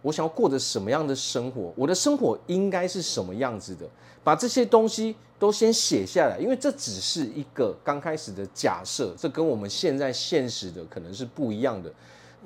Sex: male